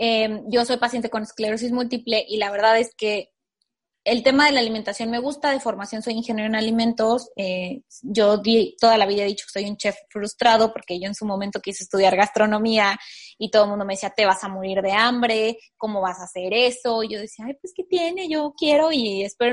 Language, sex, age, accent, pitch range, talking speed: Spanish, female, 20-39, Mexican, 200-235 Hz, 225 wpm